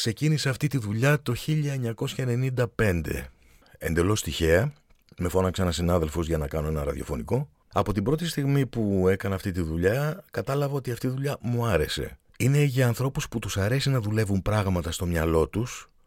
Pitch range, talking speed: 85-125 Hz, 170 wpm